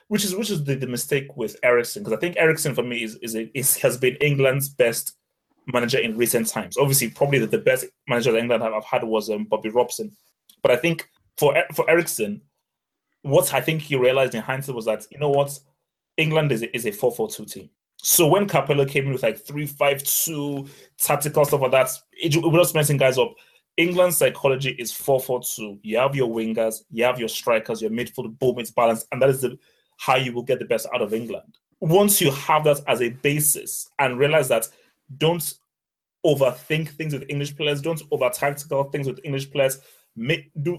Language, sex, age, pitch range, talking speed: English, male, 20-39, 125-160 Hz, 215 wpm